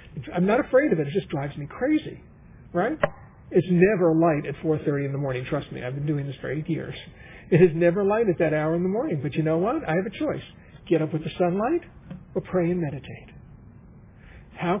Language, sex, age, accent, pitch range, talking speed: English, male, 50-69, American, 150-190 Hz, 225 wpm